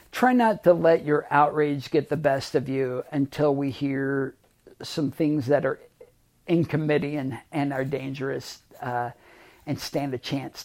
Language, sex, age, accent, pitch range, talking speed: English, male, 50-69, American, 135-170 Hz, 165 wpm